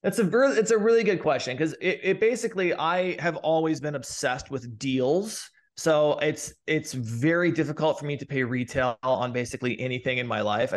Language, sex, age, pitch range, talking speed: English, male, 20-39, 130-160 Hz, 195 wpm